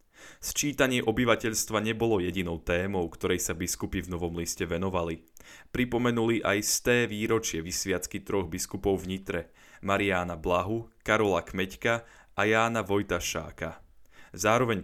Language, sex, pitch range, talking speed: Slovak, male, 90-110 Hz, 120 wpm